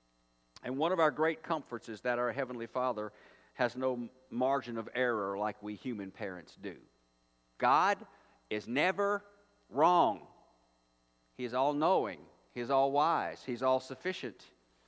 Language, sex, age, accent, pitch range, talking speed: English, male, 50-69, American, 110-165 Hz, 135 wpm